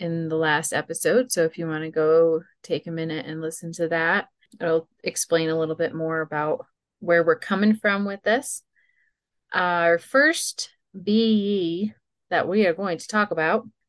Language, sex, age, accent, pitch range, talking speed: English, female, 30-49, American, 170-210 Hz, 175 wpm